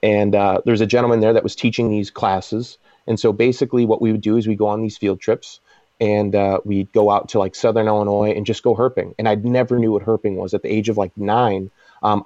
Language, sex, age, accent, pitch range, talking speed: English, male, 30-49, American, 100-115 Hz, 255 wpm